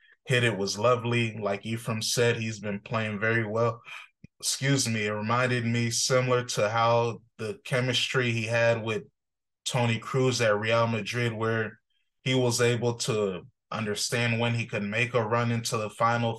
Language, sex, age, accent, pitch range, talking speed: English, male, 20-39, American, 110-120 Hz, 165 wpm